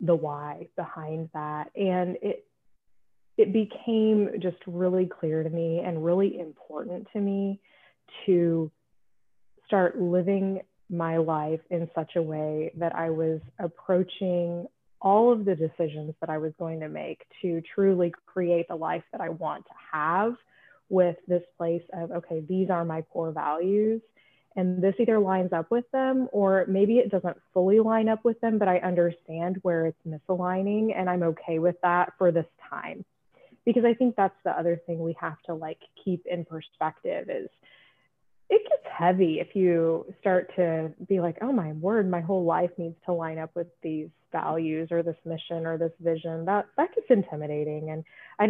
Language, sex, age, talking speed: English, female, 20-39, 175 wpm